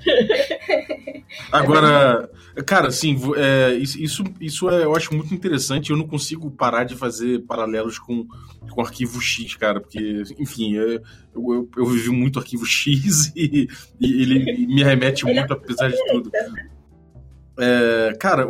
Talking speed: 145 wpm